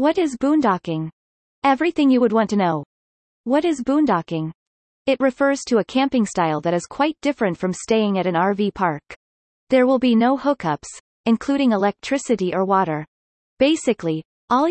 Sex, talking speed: female, 160 wpm